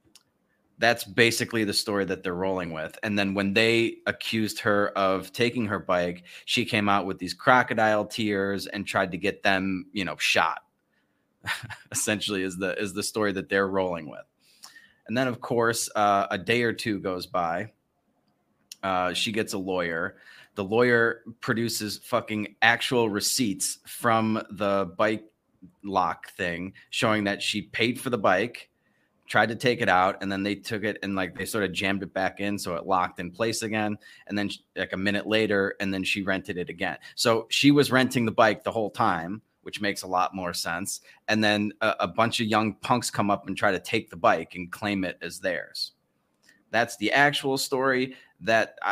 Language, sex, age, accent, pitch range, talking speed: English, male, 30-49, American, 95-115 Hz, 190 wpm